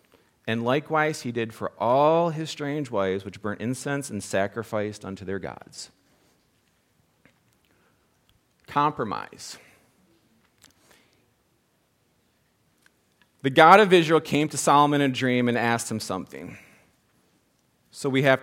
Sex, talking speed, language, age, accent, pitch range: male, 115 wpm, English, 40-59, American, 110-140 Hz